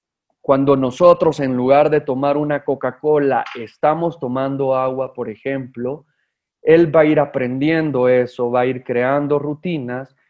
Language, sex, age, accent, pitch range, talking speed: Spanish, male, 30-49, Mexican, 130-150 Hz, 140 wpm